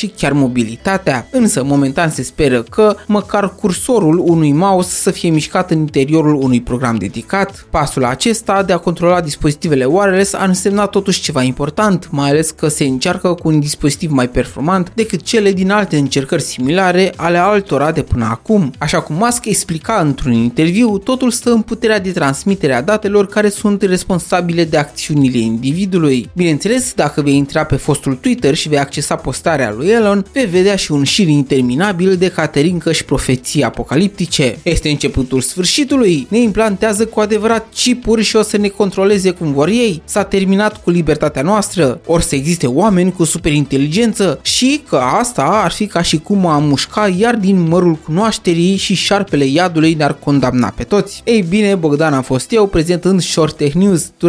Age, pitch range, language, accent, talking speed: 20-39, 145-200 Hz, Romanian, native, 170 wpm